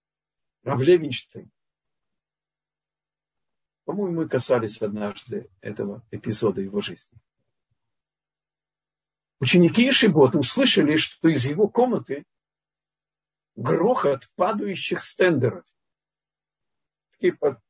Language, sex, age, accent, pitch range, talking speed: Russian, male, 50-69, native, 115-195 Hz, 70 wpm